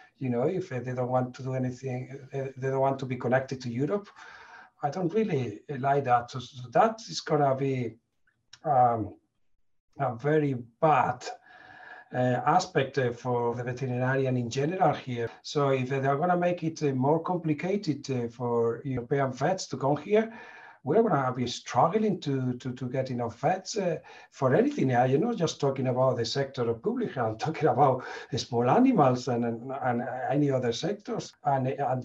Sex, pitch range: male, 125-145 Hz